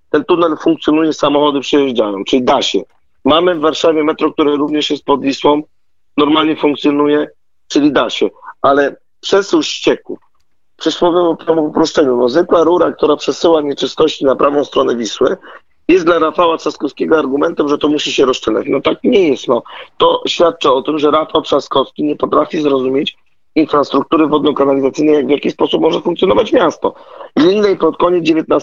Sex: male